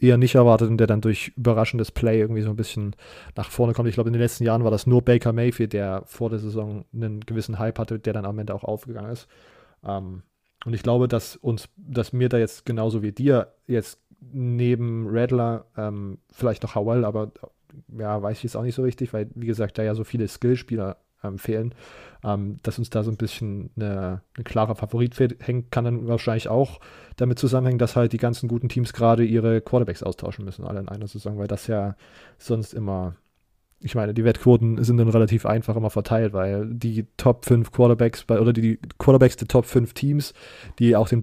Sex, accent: male, German